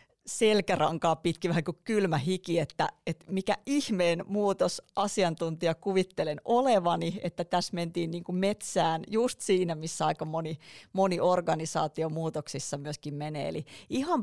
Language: Finnish